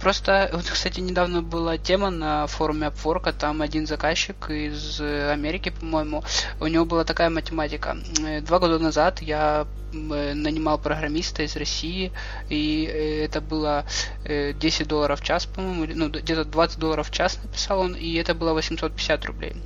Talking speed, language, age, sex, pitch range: 150 wpm, Russian, 20-39, male, 150-165 Hz